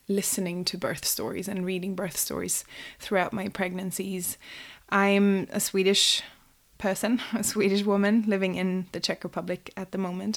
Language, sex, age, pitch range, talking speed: English, female, 20-39, 180-200 Hz, 150 wpm